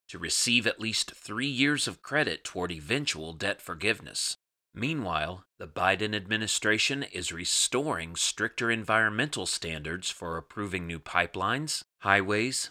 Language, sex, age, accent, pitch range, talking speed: English, male, 30-49, American, 90-115 Hz, 125 wpm